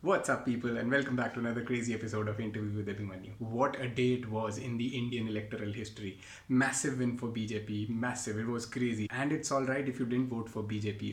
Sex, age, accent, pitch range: male, 30-49, Indian, 110-130 Hz